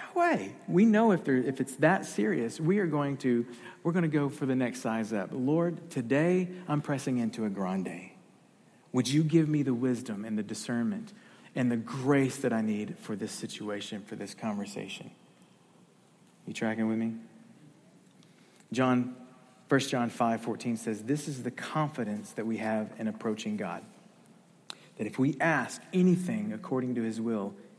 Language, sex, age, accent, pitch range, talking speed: English, male, 40-59, American, 110-145 Hz, 170 wpm